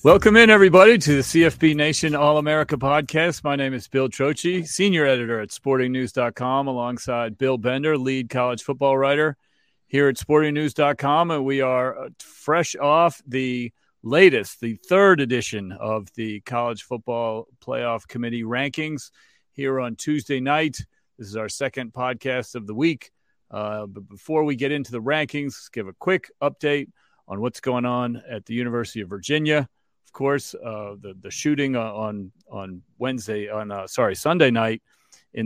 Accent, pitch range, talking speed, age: American, 110-140 Hz, 155 wpm, 40-59